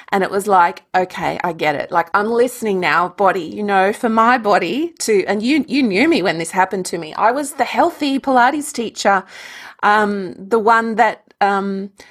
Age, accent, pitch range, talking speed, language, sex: 30-49, Australian, 190-240 Hz, 200 wpm, English, female